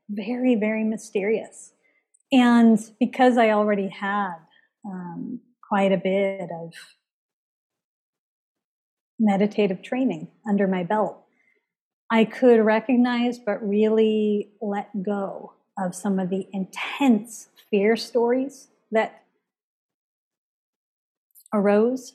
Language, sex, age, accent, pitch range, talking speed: English, female, 40-59, American, 190-230 Hz, 90 wpm